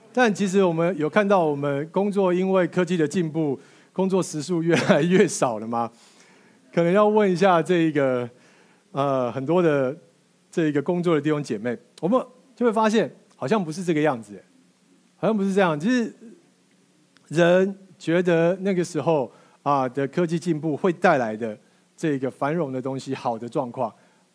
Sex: male